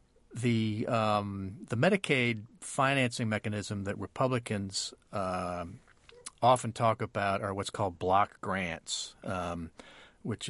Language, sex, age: English, male, 40-59